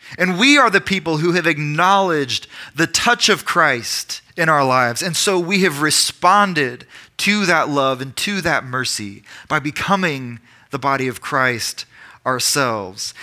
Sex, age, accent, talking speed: male, 20-39, American, 155 wpm